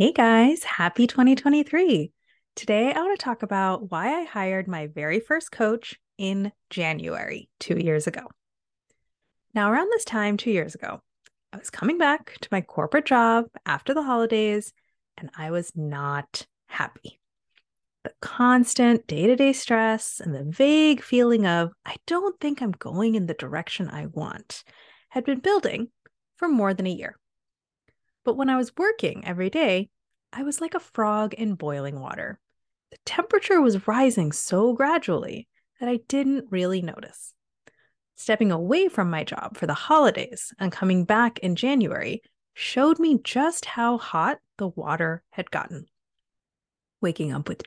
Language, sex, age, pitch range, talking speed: English, female, 30-49, 185-265 Hz, 155 wpm